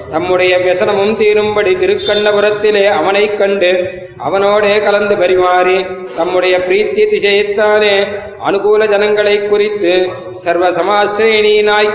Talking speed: 80 wpm